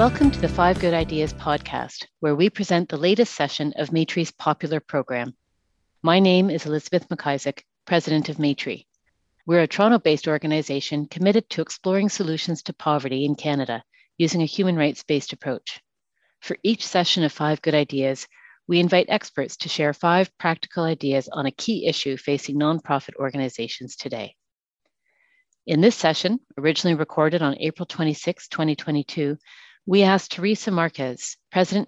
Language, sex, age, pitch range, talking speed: English, female, 40-59, 140-175 Hz, 150 wpm